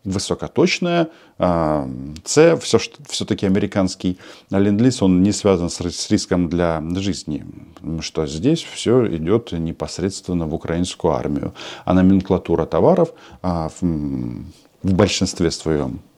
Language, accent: Russian, native